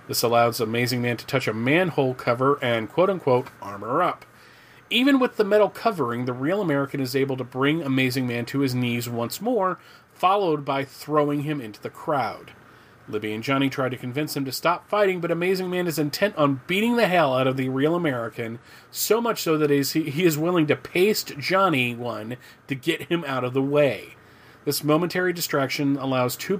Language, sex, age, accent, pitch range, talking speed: English, male, 30-49, American, 125-170 Hz, 195 wpm